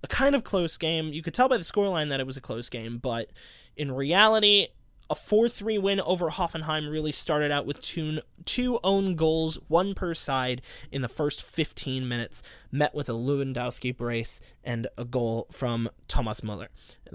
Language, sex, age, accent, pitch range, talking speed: English, male, 20-39, American, 125-160 Hz, 180 wpm